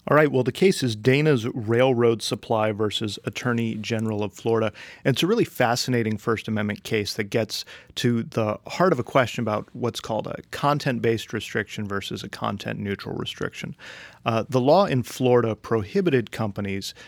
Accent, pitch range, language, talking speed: American, 110-135 Hz, English, 165 wpm